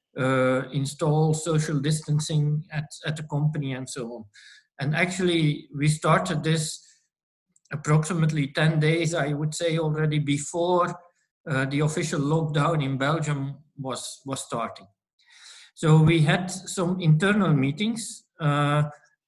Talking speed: 125 wpm